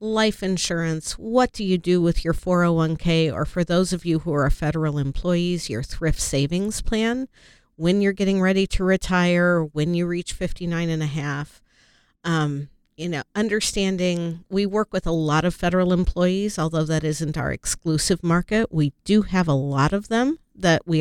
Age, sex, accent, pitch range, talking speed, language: 50-69, female, American, 155-185 Hz, 175 wpm, English